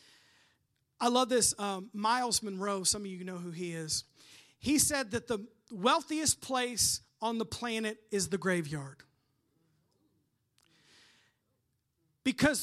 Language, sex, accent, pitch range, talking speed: English, male, American, 175-260 Hz, 125 wpm